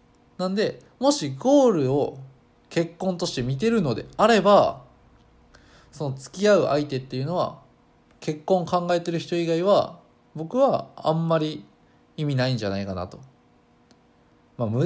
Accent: native